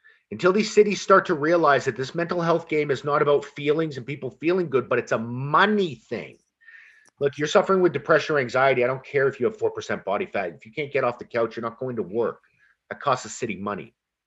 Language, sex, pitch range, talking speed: English, male, 145-195 Hz, 240 wpm